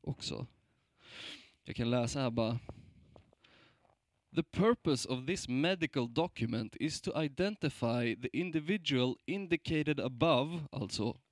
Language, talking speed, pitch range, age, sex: Swedish, 105 wpm, 125-160 Hz, 20-39, male